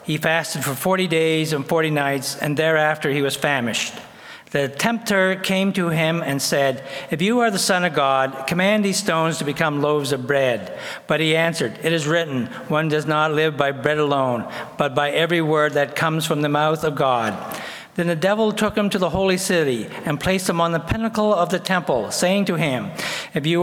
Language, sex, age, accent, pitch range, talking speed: English, male, 60-79, American, 140-175 Hz, 210 wpm